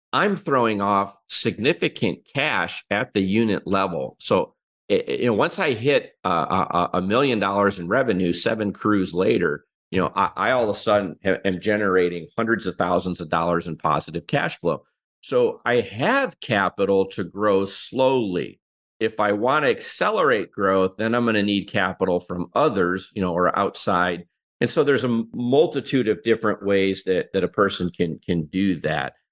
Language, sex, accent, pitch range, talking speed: English, male, American, 95-115 Hz, 175 wpm